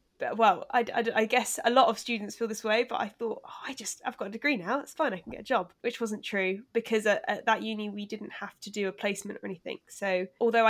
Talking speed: 275 wpm